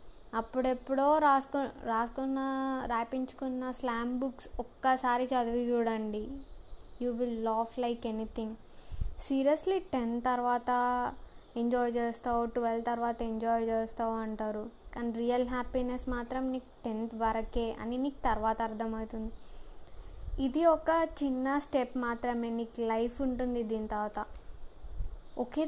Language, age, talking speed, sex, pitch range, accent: Telugu, 20-39, 105 wpm, female, 230-265 Hz, native